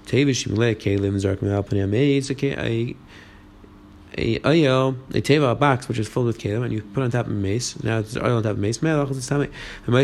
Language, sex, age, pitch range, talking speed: English, male, 20-39, 115-145 Hz, 135 wpm